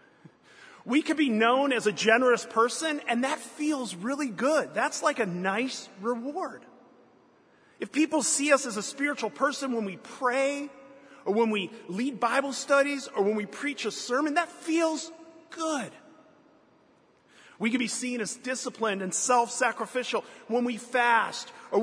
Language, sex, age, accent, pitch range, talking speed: English, male, 30-49, American, 200-255 Hz, 155 wpm